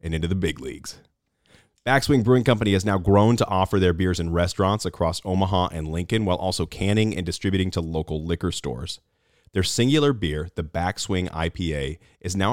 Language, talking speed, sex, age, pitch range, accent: English, 180 wpm, male, 30-49, 80-110 Hz, American